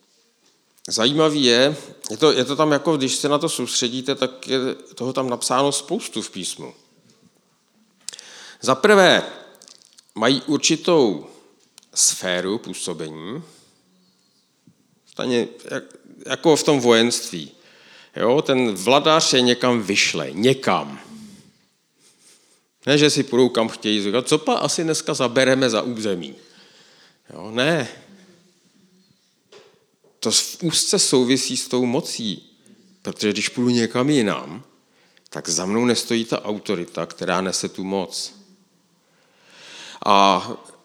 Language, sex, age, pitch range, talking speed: Czech, male, 50-69, 115-155 Hz, 115 wpm